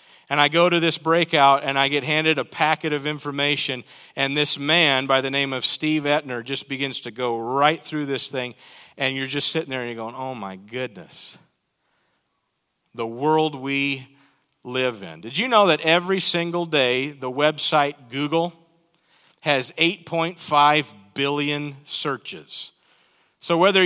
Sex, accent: male, American